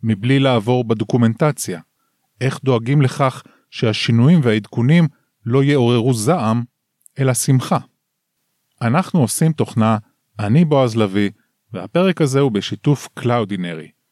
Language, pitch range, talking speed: Hebrew, 115-145 Hz, 100 wpm